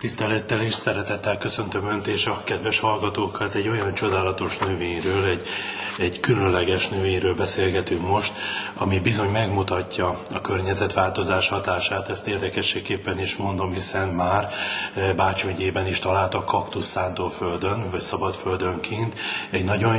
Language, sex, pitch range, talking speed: Hungarian, male, 95-115 Hz, 125 wpm